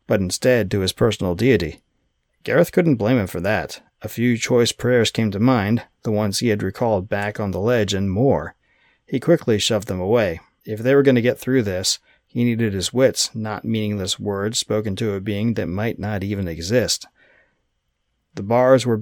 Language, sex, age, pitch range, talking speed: English, male, 40-59, 100-120 Hz, 195 wpm